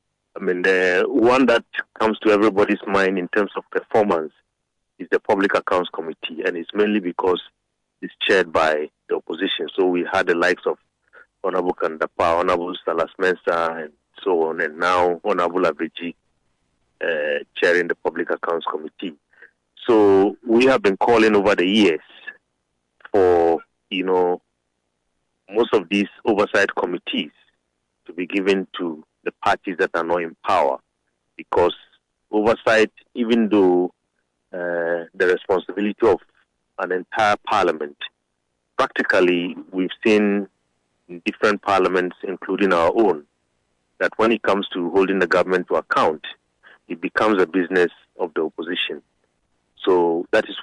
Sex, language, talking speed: male, English, 140 wpm